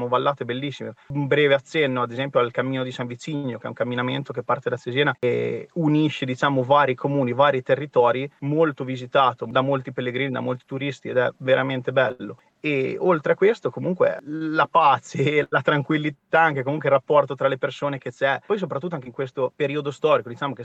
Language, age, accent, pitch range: Italian, 30-49, native, 125-145 Hz